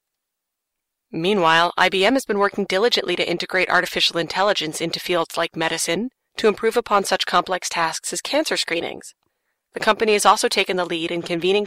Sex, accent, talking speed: female, American, 165 wpm